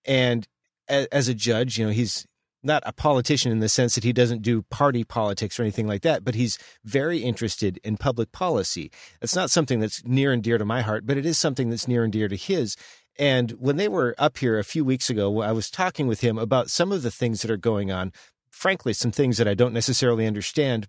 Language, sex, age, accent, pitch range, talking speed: English, male, 40-59, American, 115-145 Hz, 235 wpm